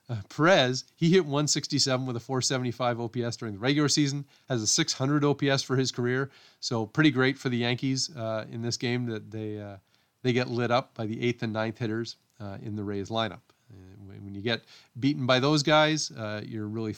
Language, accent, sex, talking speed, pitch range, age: English, American, male, 210 wpm, 110-135 Hz, 40-59